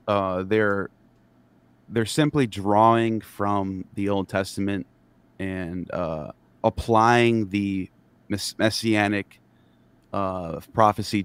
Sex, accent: male, American